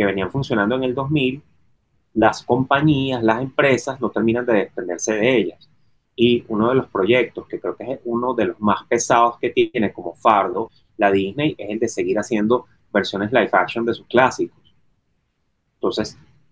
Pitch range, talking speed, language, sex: 105-130 Hz, 175 wpm, Spanish, male